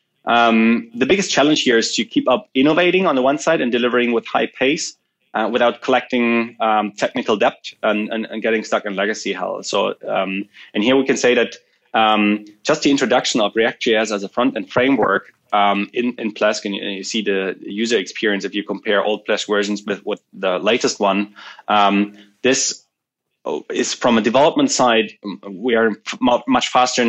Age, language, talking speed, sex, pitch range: 20-39, English, 190 wpm, male, 105-125 Hz